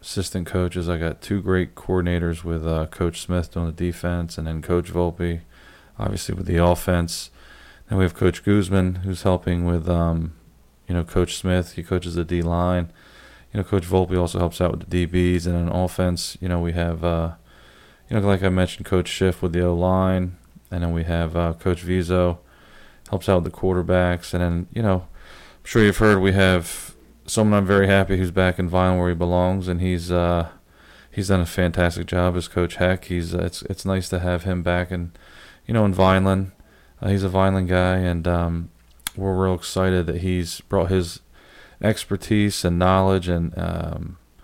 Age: 20-39